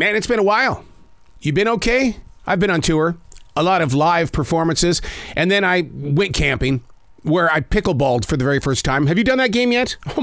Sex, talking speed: male, 215 wpm